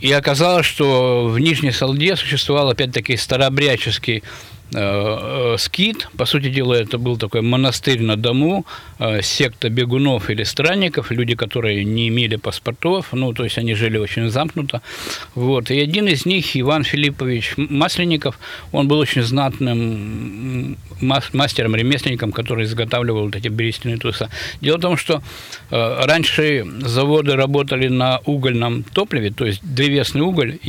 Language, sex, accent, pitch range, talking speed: Russian, male, native, 115-145 Hz, 135 wpm